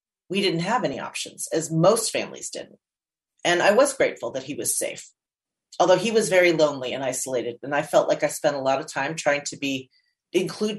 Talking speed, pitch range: 210 wpm, 150-185 Hz